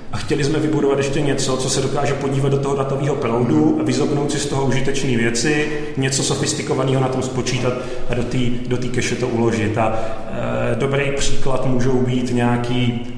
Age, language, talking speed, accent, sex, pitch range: 30-49, Czech, 180 wpm, native, male, 115-130 Hz